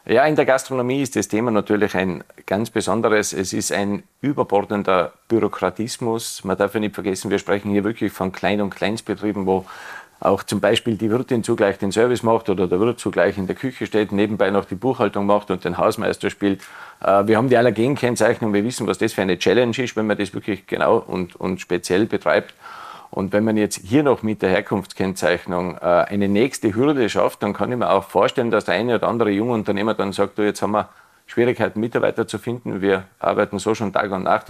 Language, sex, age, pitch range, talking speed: German, male, 40-59, 100-120 Hz, 205 wpm